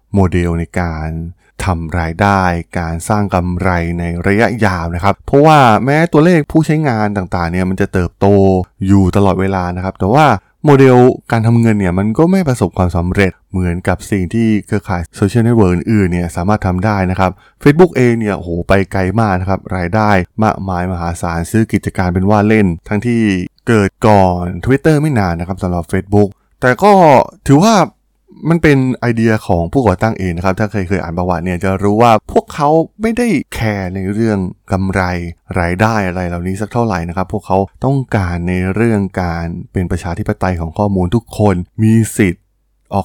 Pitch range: 90-110 Hz